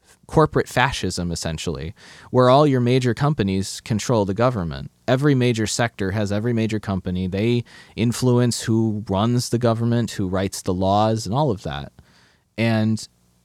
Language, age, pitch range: English, 30-49, 100-120 Hz